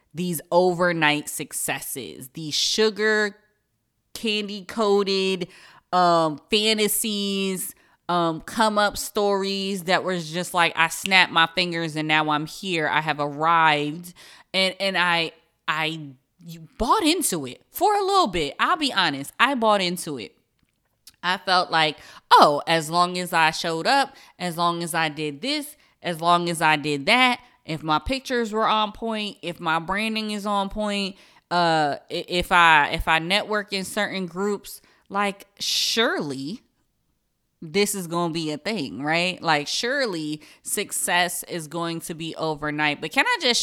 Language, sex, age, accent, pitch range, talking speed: English, female, 20-39, American, 160-205 Hz, 155 wpm